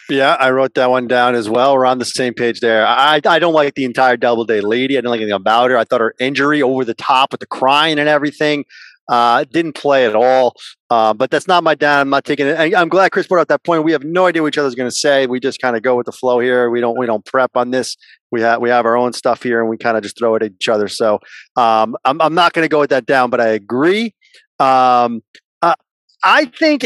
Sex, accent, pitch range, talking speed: male, American, 125-210 Hz, 280 wpm